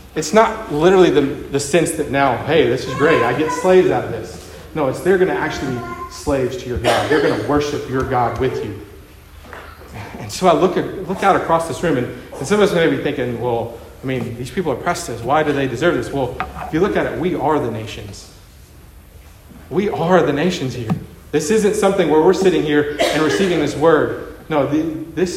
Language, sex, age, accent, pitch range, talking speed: English, male, 40-59, American, 115-165 Hz, 225 wpm